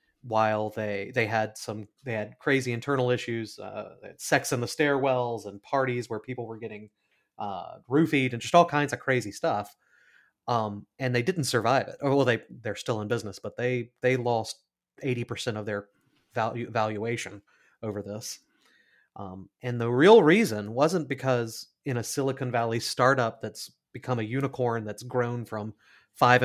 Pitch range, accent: 110-135 Hz, American